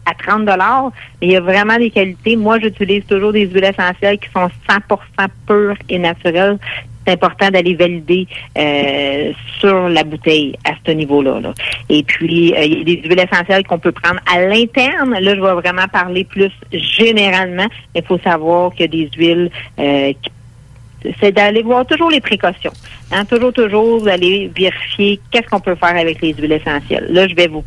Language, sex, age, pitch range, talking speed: English, female, 50-69, 170-210 Hz, 190 wpm